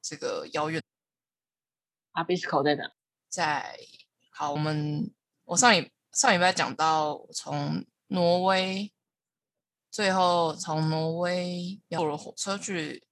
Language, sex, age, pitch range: Chinese, female, 20-39, 160-195 Hz